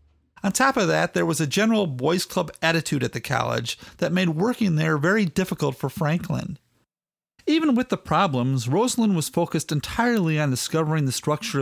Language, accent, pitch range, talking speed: English, American, 145-195 Hz, 175 wpm